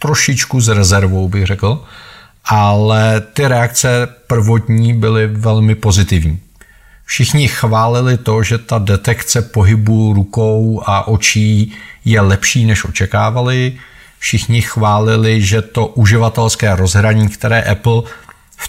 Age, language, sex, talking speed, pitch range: 40-59, Czech, male, 110 wpm, 105-120 Hz